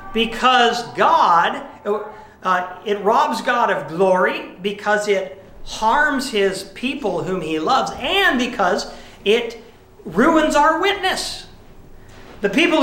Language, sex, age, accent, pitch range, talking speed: English, male, 50-69, American, 165-225 Hz, 110 wpm